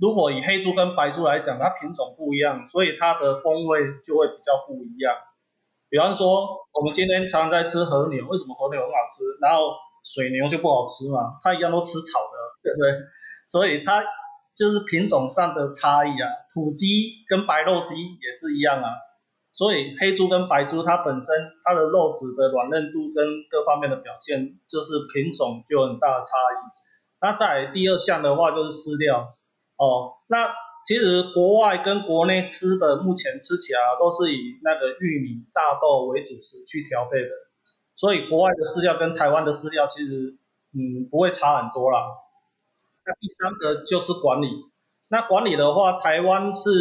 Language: Chinese